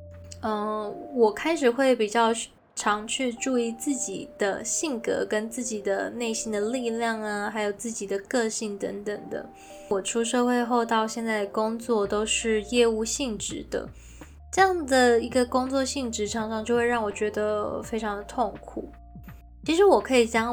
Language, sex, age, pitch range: Chinese, female, 10-29, 210-245 Hz